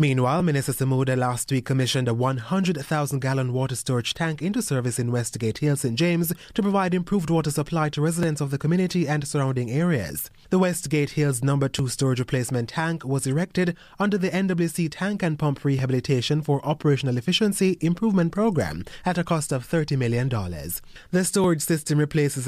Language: English